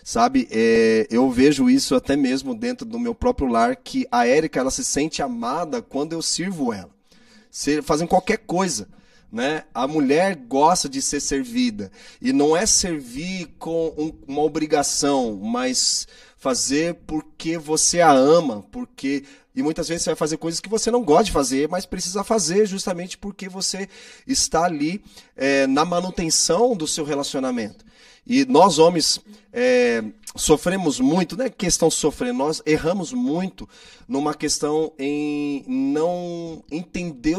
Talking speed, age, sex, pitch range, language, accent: 150 wpm, 30-49, male, 155-245 Hz, Portuguese, Brazilian